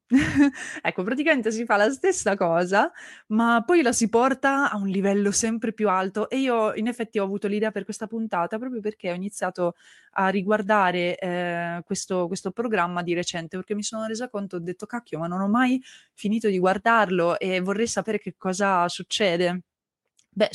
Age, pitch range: 20-39, 175-220 Hz